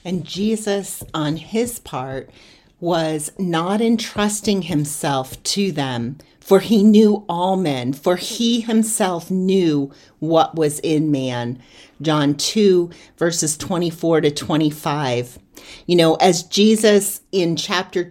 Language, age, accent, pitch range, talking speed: English, 40-59, American, 155-195 Hz, 125 wpm